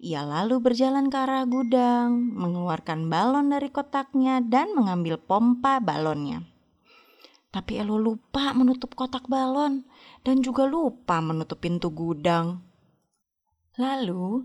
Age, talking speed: 20-39, 110 wpm